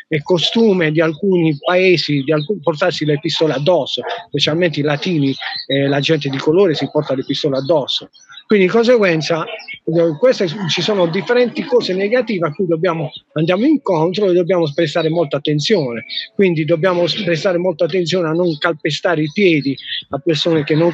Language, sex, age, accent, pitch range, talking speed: Italian, male, 40-59, native, 160-210 Hz, 155 wpm